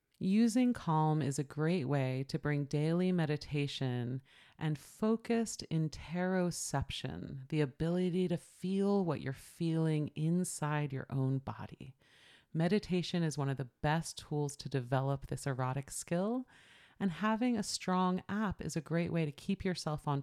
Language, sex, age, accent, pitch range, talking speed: English, female, 30-49, American, 135-185 Hz, 145 wpm